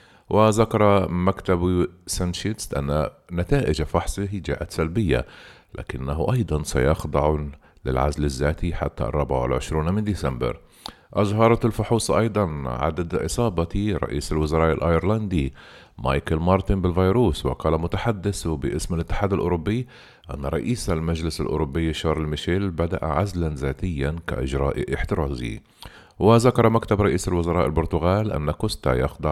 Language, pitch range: Arabic, 75-95 Hz